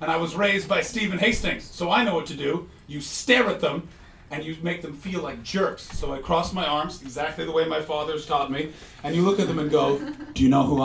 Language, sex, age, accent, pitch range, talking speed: English, male, 40-59, American, 130-185 Hz, 260 wpm